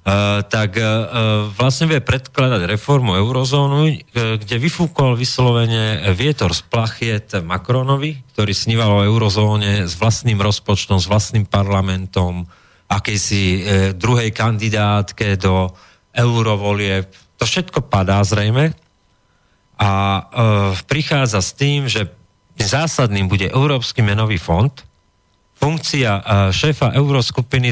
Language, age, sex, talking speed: Slovak, 40-59, male, 110 wpm